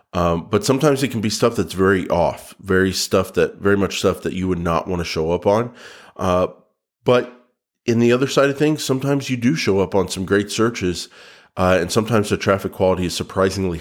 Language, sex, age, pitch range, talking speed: English, male, 40-59, 90-105 Hz, 215 wpm